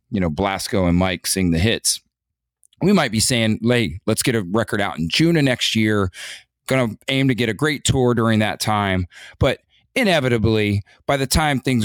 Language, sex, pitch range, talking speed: English, male, 95-120 Hz, 205 wpm